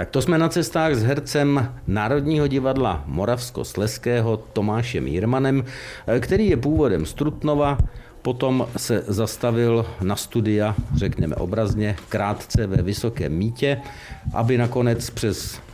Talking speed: 120 wpm